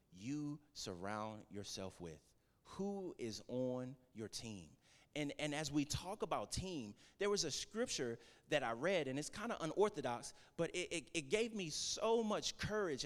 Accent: American